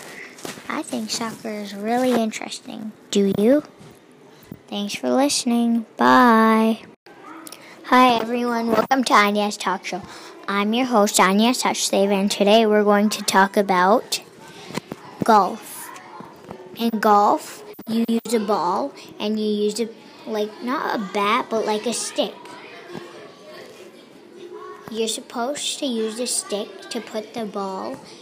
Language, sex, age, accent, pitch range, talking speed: English, male, 10-29, American, 205-245 Hz, 130 wpm